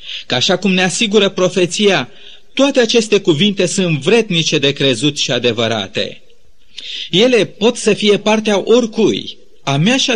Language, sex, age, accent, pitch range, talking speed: Romanian, male, 40-59, native, 160-215 Hz, 155 wpm